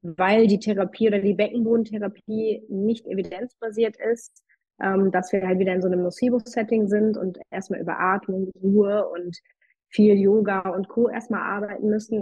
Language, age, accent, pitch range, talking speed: German, 20-39, German, 185-215 Hz, 155 wpm